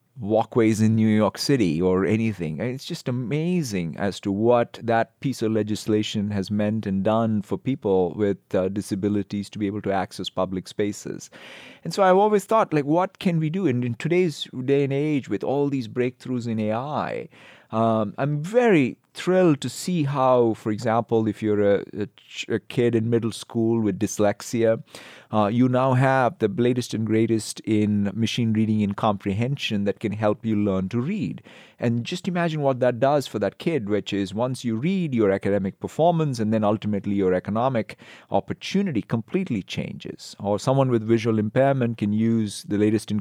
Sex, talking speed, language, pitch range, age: male, 175 wpm, English, 105-130 Hz, 30-49